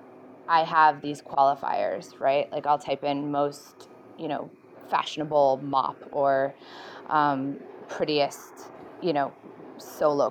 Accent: American